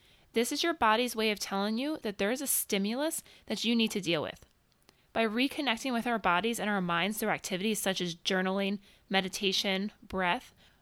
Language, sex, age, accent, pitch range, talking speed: English, female, 20-39, American, 200-255 Hz, 190 wpm